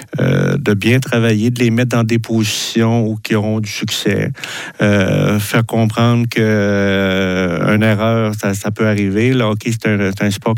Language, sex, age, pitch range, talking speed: French, male, 60-79, 105-115 Hz, 175 wpm